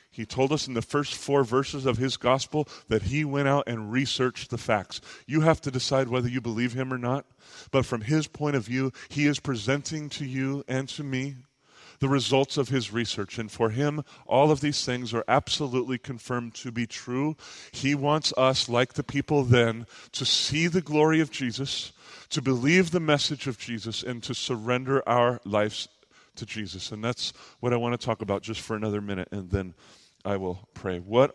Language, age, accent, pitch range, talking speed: English, 30-49, American, 110-135 Hz, 200 wpm